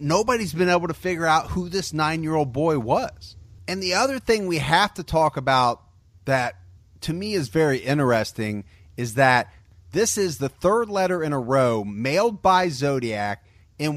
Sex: male